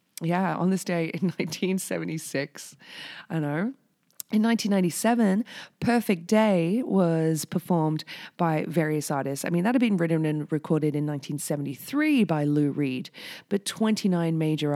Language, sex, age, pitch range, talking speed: English, female, 20-39, 150-195 Hz, 135 wpm